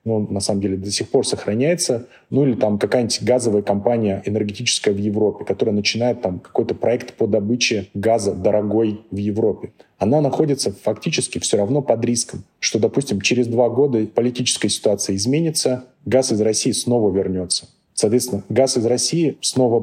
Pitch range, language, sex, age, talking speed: 100-125 Hz, Russian, male, 30-49, 165 wpm